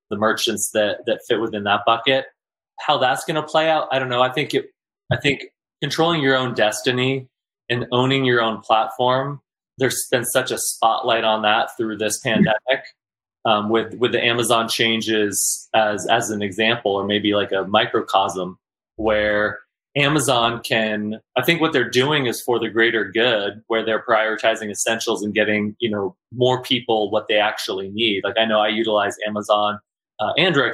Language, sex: English, male